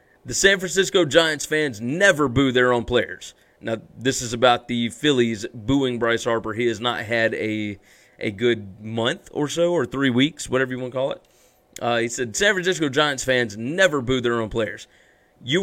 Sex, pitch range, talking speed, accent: male, 120-155 Hz, 195 wpm, American